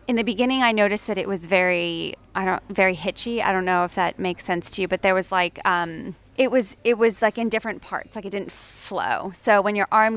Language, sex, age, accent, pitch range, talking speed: English, female, 20-39, American, 175-210 Hz, 255 wpm